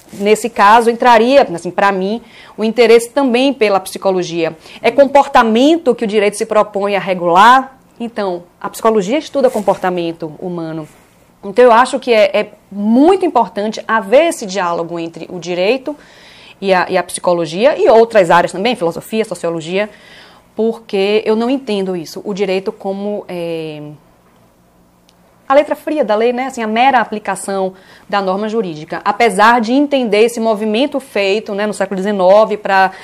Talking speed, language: 155 wpm, Portuguese